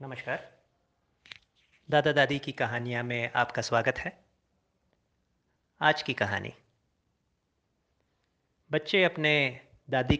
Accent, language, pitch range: native, Hindi, 120-165 Hz